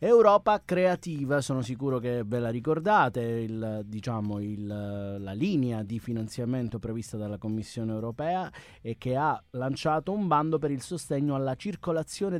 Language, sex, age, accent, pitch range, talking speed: Italian, male, 30-49, native, 120-165 Hz, 145 wpm